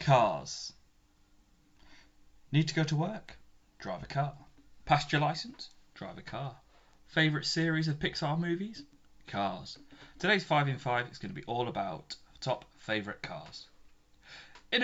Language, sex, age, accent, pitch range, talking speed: English, male, 30-49, British, 120-170 Hz, 140 wpm